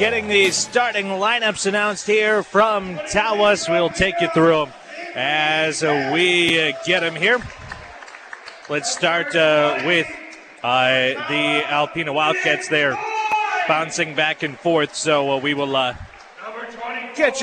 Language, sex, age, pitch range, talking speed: English, male, 30-49, 165-240 Hz, 115 wpm